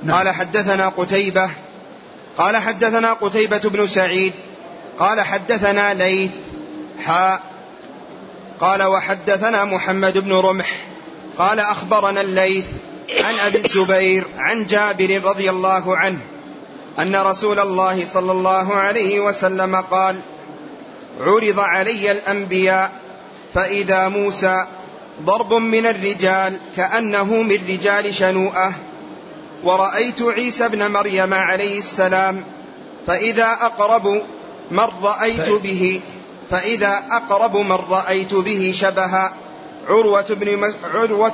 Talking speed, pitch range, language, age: 95 wpm, 190-205 Hz, Arabic, 30-49